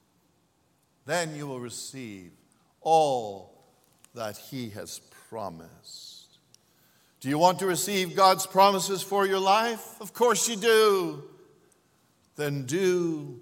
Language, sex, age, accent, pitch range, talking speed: English, male, 50-69, American, 165-215 Hz, 110 wpm